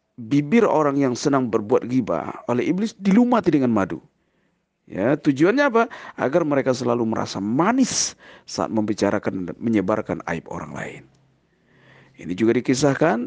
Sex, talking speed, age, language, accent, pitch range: male, 130 wpm, 50-69, Indonesian, native, 105-140 Hz